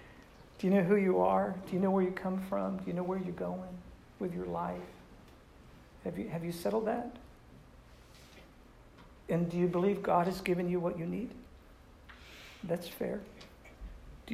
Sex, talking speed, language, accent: male, 175 wpm, English, American